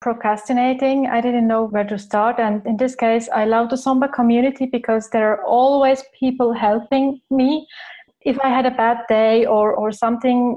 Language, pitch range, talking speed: English, 225-280 Hz, 180 wpm